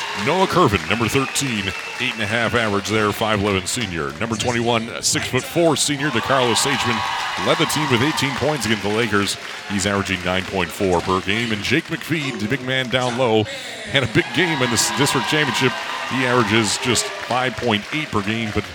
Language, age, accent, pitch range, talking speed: English, 40-59, American, 100-130 Hz, 175 wpm